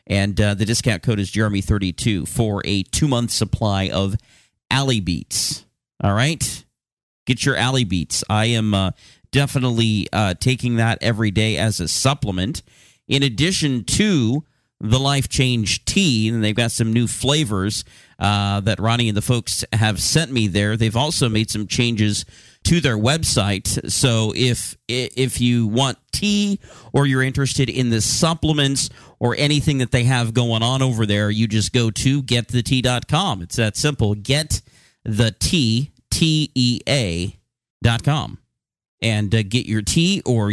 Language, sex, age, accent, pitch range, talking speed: English, male, 40-59, American, 105-130 Hz, 150 wpm